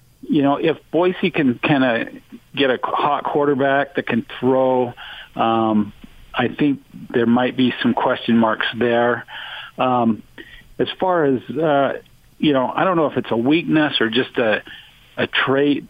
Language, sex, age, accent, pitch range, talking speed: English, male, 50-69, American, 110-135 Hz, 160 wpm